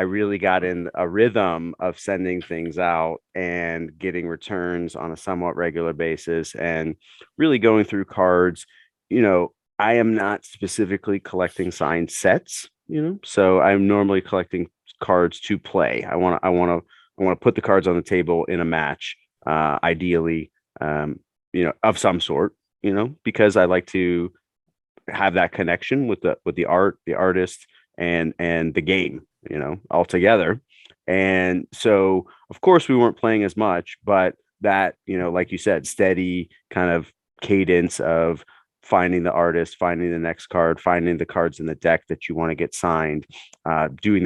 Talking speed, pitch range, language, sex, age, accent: 180 wpm, 85-95 Hz, English, male, 30-49, American